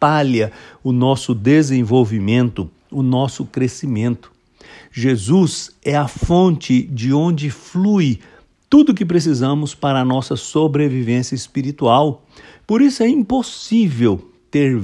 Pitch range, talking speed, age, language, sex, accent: 115-150 Hz, 110 wpm, 60-79, English, male, Brazilian